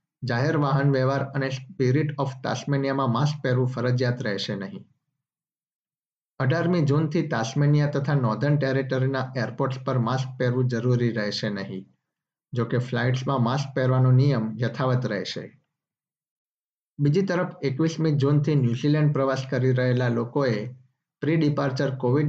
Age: 50-69